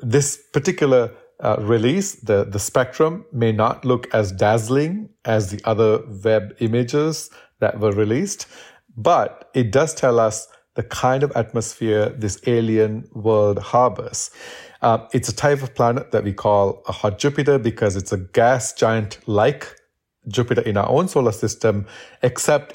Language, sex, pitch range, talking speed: English, male, 110-135 Hz, 155 wpm